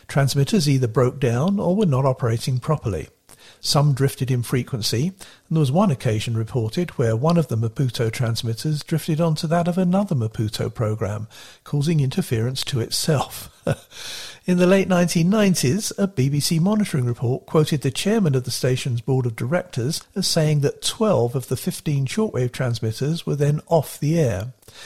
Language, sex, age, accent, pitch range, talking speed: English, male, 50-69, British, 120-165 Hz, 160 wpm